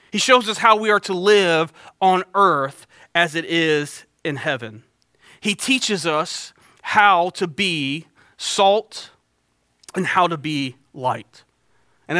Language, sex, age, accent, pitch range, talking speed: English, male, 30-49, American, 185-250 Hz, 140 wpm